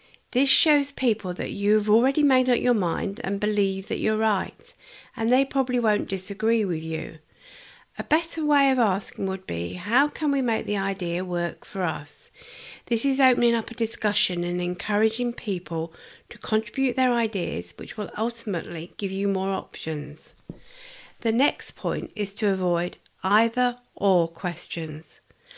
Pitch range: 185-255 Hz